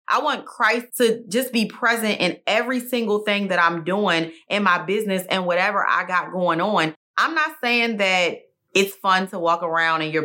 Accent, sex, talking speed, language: American, female, 200 wpm, English